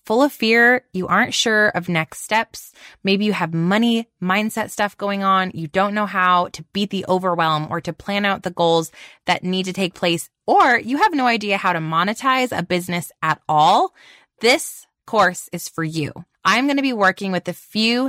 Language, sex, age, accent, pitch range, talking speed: English, female, 20-39, American, 175-235 Hz, 200 wpm